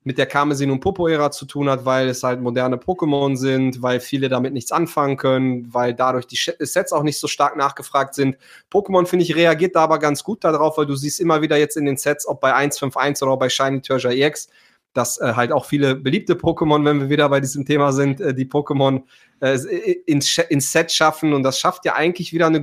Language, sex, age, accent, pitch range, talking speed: German, male, 20-39, German, 135-160 Hz, 230 wpm